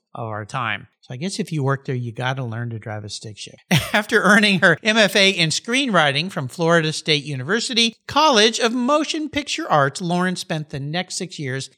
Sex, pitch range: male, 135-210 Hz